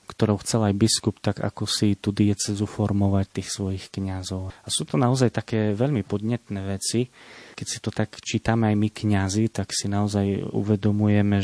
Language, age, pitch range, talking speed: Slovak, 30-49, 100-115 Hz, 175 wpm